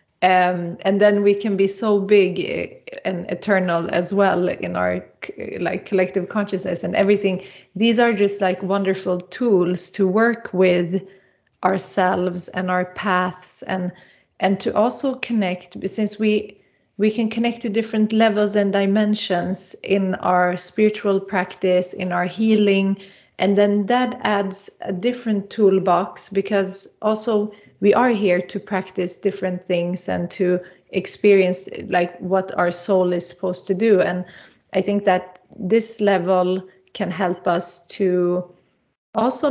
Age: 30-49